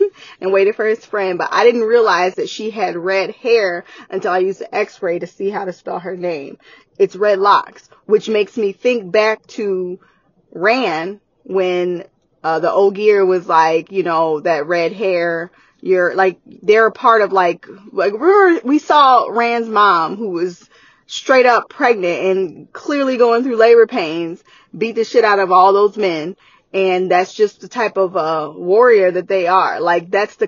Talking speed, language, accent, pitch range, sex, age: 185 wpm, English, American, 180-220 Hz, female, 20-39